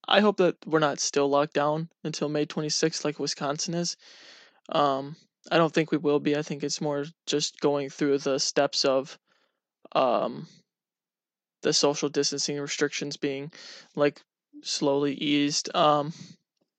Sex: male